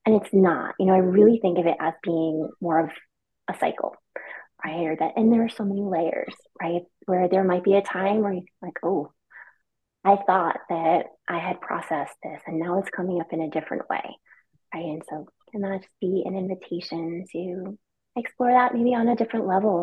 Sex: female